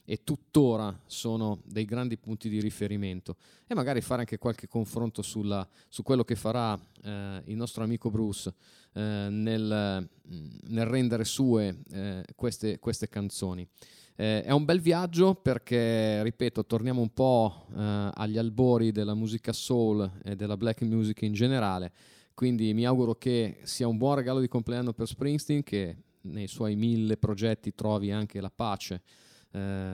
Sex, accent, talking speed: male, native, 155 wpm